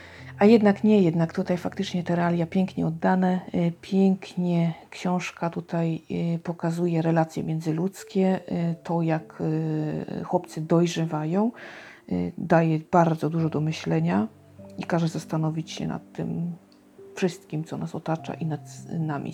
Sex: female